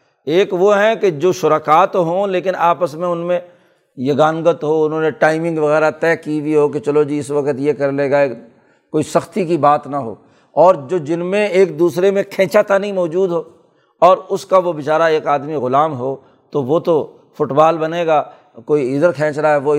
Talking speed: 210 wpm